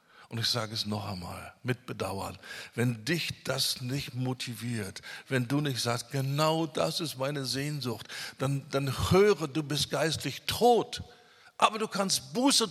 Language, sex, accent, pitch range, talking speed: German, male, German, 120-160 Hz, 155 wpm